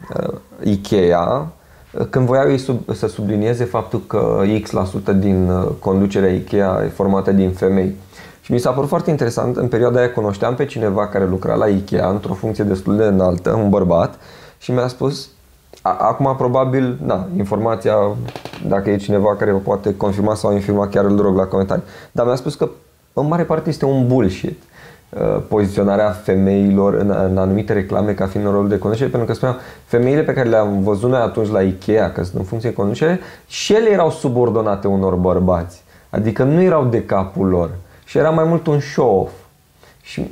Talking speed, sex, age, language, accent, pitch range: 175 wpm, male, 20-39, Romanian, native, 95-125 Hz